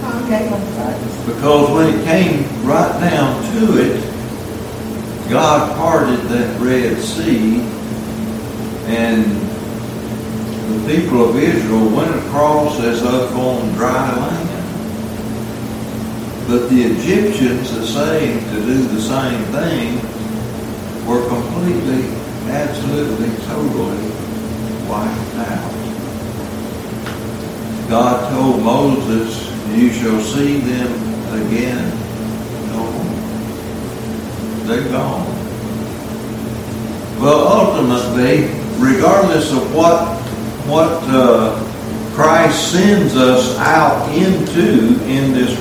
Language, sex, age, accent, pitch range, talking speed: English, male, 60-79, American, 110-125 Hz, 85 wpm